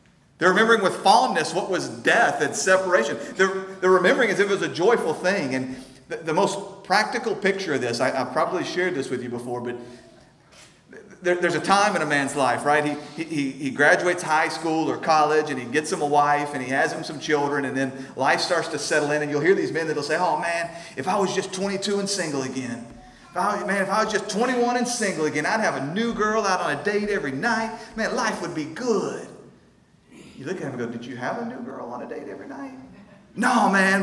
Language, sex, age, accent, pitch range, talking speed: English, male, 40-59, American, 130-195 Hz, 240 wpm